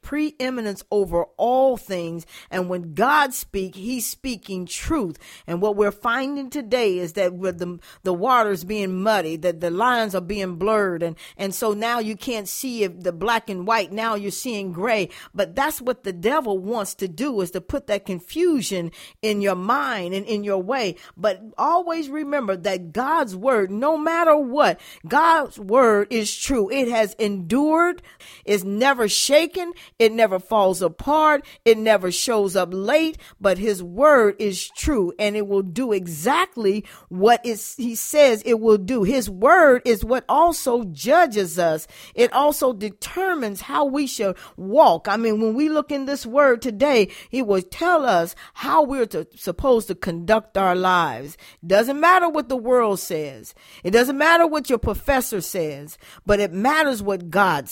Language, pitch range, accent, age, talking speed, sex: English, 195-265 Hz, American, 40-59, 170 wpm, female